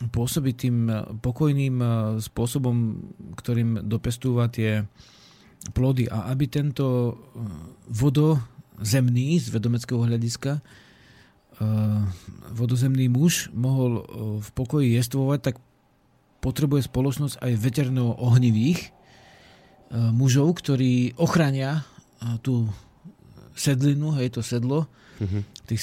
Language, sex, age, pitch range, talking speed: Slovak, male, 50-69, 115-135 Hz, 75 wpm